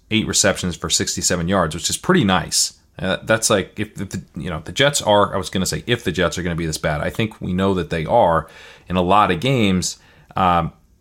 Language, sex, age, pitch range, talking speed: English, male, 30-49, 85-100 Hz, 250 wpm